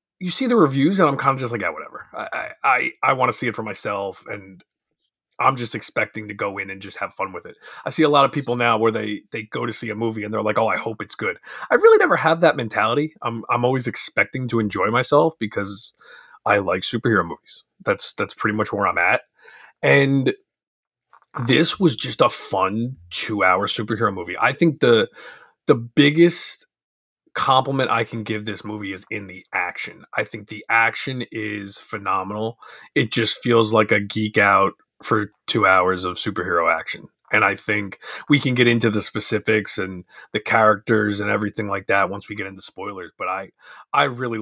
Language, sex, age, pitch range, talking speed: English, male, 30-49, 105-125 Hz, 205 wpm